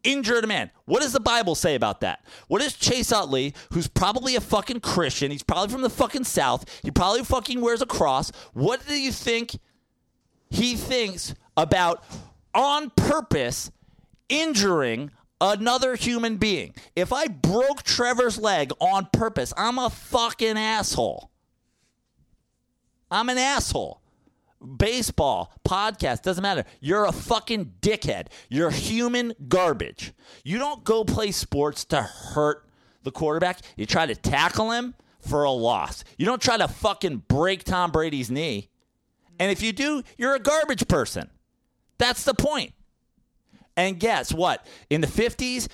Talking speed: 145 wpm